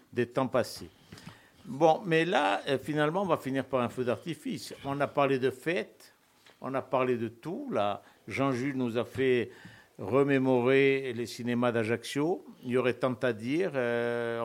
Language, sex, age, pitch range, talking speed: French, male, 60-79, 115-135 Hz, 170 wpm